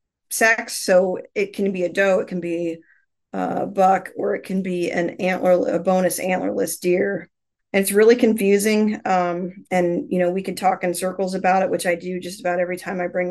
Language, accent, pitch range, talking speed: English, American, 180-195 Hz, 205 wpm